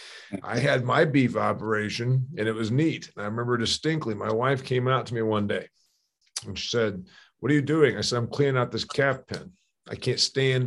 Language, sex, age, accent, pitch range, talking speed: English, male, 50-69, American, 125-180 Hz, 220 wpm